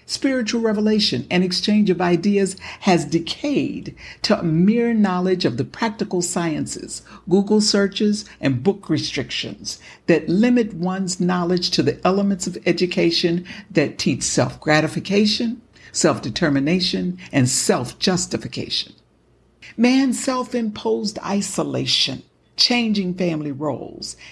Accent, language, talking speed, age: American, English, 105 wpm, 60-79